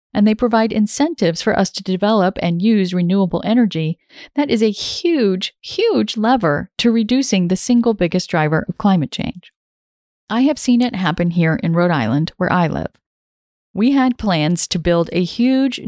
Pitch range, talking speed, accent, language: 170-225 Hz, 175 wpm, American, English